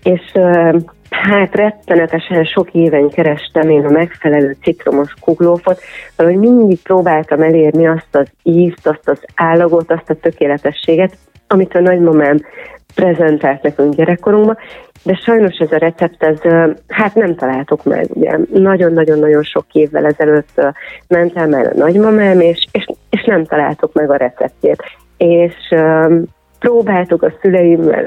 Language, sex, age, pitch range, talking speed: Hungarian, female, 30-49, 155-185 Hz, 130 wpm